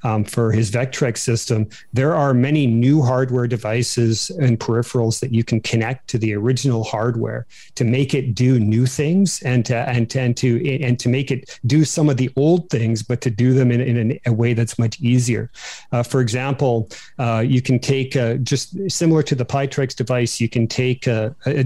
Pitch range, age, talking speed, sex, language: 120-135 Hz, 40-59, 205 wpm, male, English